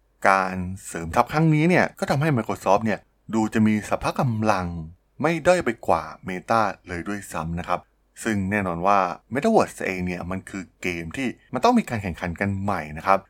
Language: Thai